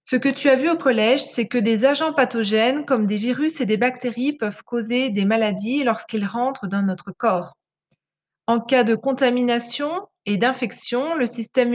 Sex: female